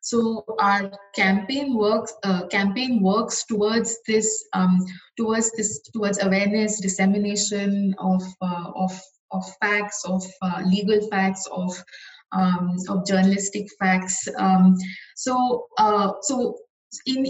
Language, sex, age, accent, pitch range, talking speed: English, female, 20-39, Indian, 185-215 Hz, 120 wpm